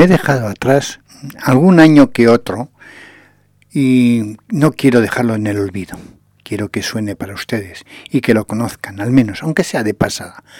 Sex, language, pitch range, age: male, English, 115-150 Hz, 60-79